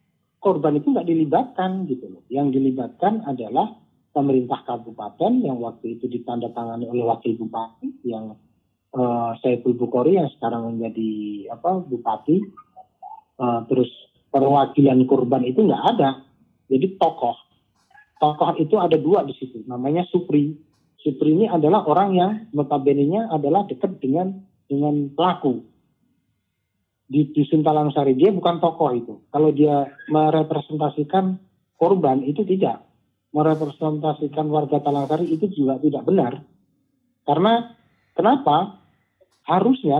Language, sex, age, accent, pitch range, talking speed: Indonesian, male, 40-59, native, 130-170 Hz, 120 wpm